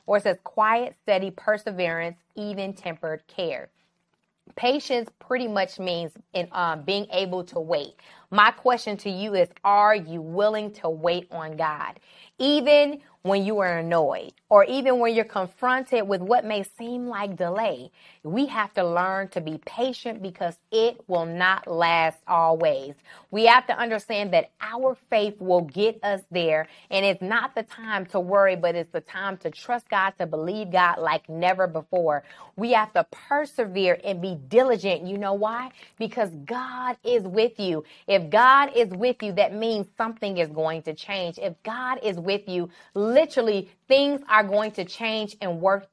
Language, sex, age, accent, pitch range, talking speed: English, female, 20-39, American, 180-230 Hz, 170 wpm